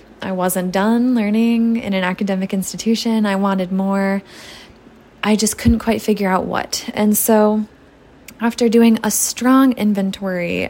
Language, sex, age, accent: English, female, 20-39, American